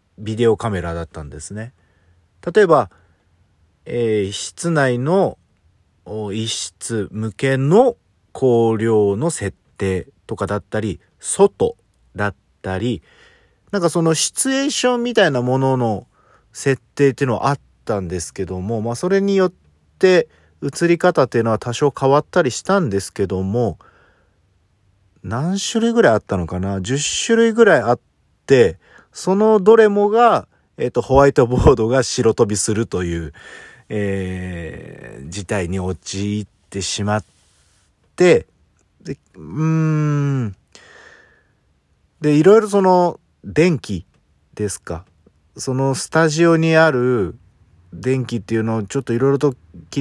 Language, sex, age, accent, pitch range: Japanese, male, 40-59, native, 95-160 Hz